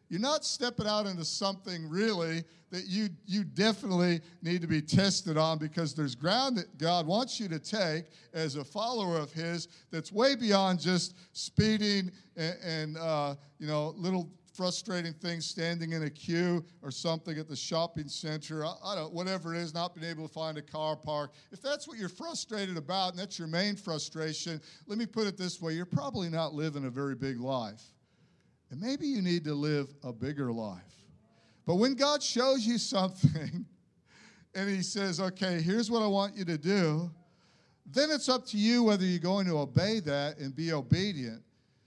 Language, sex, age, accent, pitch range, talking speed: English, male, 50-69, American, 155-205 Hz, 190 wpm